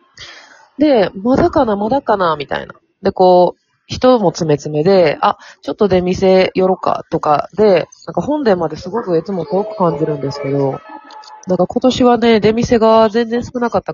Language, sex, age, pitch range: Japanese, female, 20-39, 150-220 Hz